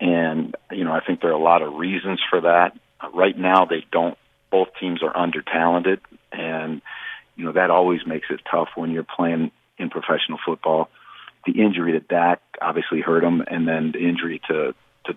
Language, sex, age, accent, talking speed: English, male, 50-69, American, 195 wpm